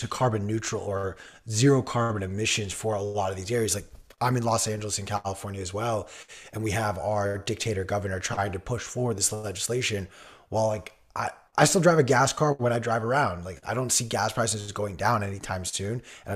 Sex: male